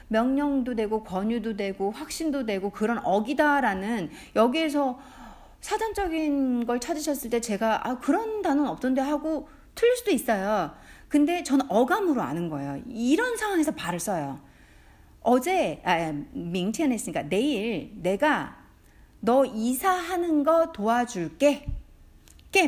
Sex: female